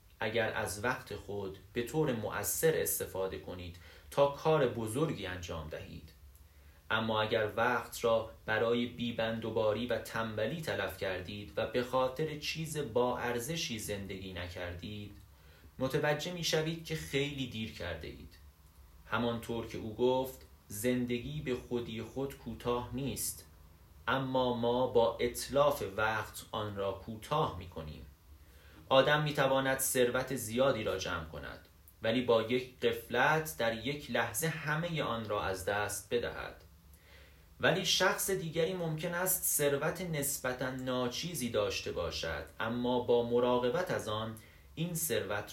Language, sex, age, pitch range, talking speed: Persian, male, 30-49, 90-130 Hz, 130 wpm